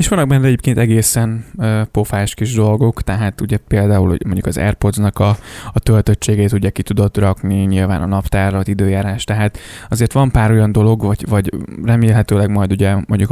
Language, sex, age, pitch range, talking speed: Hungarian, male, 20-39, 100-115 Hz, 180 wpm